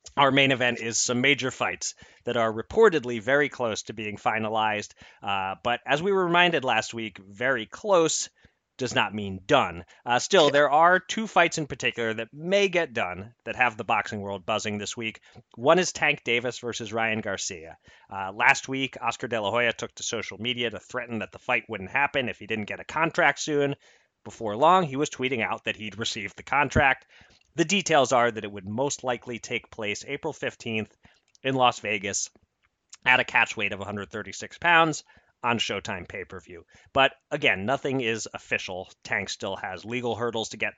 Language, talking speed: English, 190 wpm